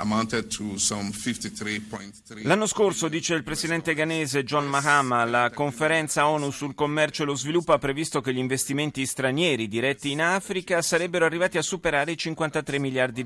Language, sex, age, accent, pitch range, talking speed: Italian, male, 30-49, native, 115-155 Hz, 145 wpm